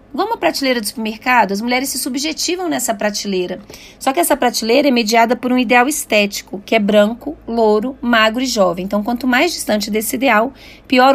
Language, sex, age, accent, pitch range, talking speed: Portuguese, female, 30-49, Brazilian, 215-265 Hz, 190 wpm